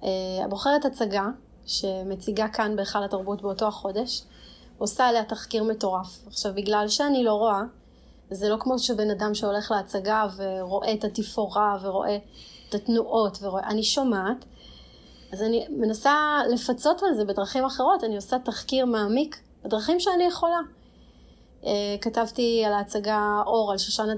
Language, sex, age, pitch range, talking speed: Hebrew, female, 30-49, 195-230 Hz, 135 wpm